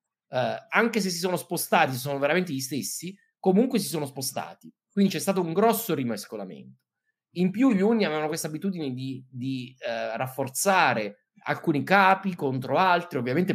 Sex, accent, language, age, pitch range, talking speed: male, native, Italian, 30-49, 130-190 Hz, 150 wpm